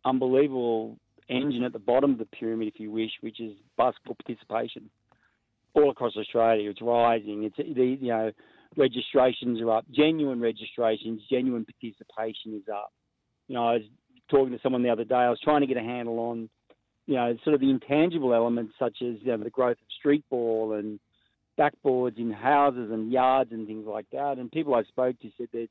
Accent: Australian